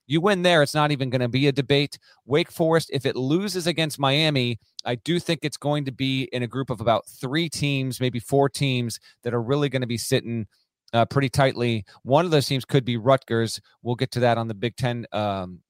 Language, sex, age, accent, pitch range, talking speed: English, male, 30-49, American, 110-135 Hz, 235 wpm